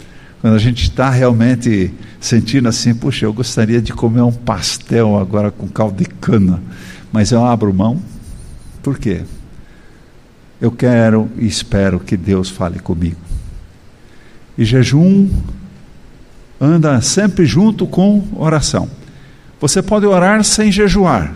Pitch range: 105-165 Hz